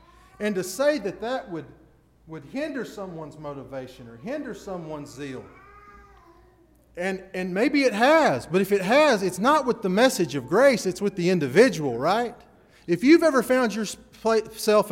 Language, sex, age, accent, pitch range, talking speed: English, male, 30-49, American, 180-275 Hz, 160 wpm